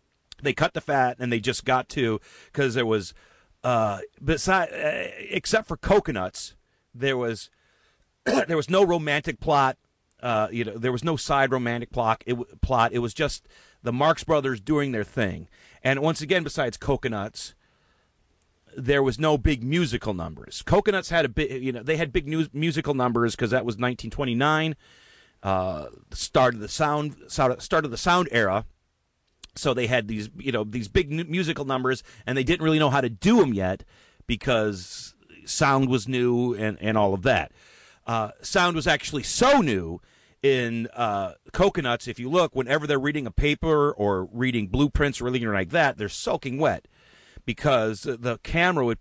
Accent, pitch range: American, 110-150 Hz